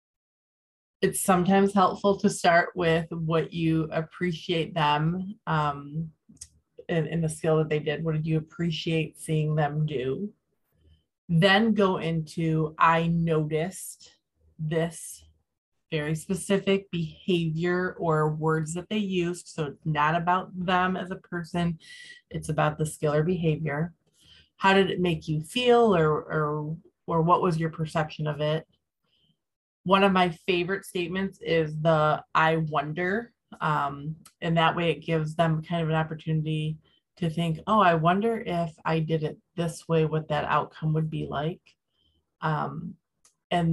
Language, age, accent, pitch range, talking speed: English, 30-49, American, 155-175 Hz, 145 wpm